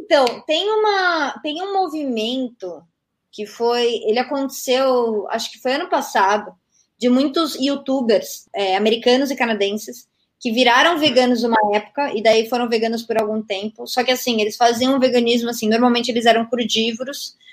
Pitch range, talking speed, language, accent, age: 220-270 Hz, 150 wpm, Portuguese, Brazilian, 20-39